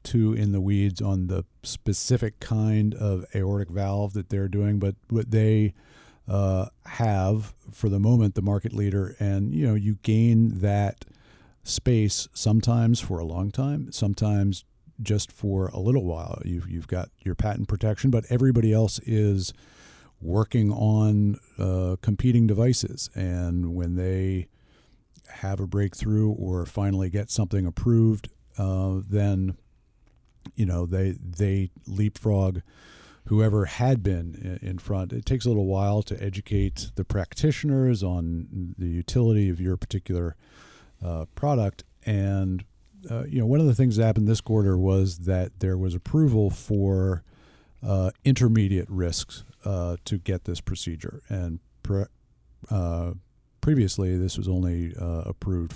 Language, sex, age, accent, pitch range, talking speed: English, male, 50-69, American, 95-110 Hz, 145 wpm